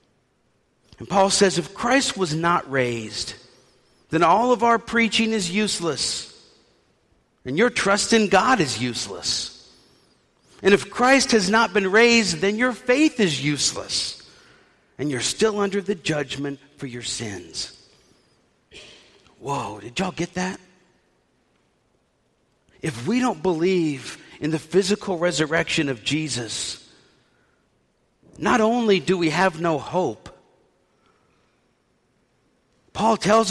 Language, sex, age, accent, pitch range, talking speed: English, male, 50-69, American, 135-205 Hz, 120 wpm